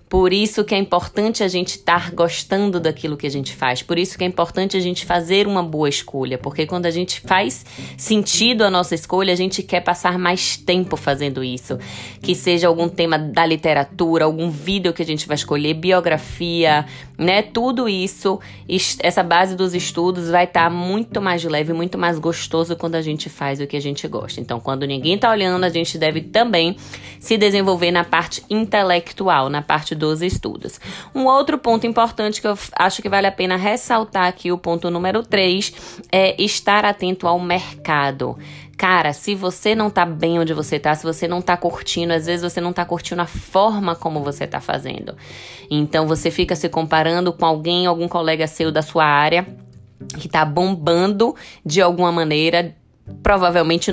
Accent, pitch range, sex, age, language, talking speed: Brazilian, 155-185 Hz, female, 20-39, Portuguese, 185 wpm